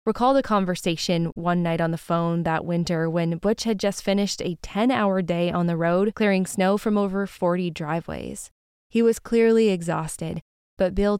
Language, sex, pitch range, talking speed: English, female, 165-205 Hz, 175 wpm